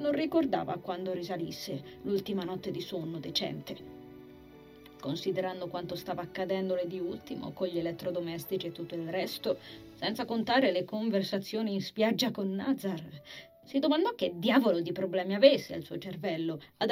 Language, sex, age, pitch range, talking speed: Italian, female, 20-39, 170-230 Hz, 145 wpm